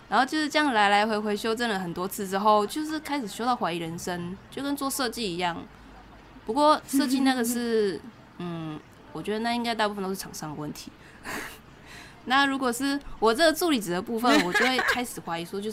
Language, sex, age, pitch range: Chinese, female, 20-39, 175-225 Hz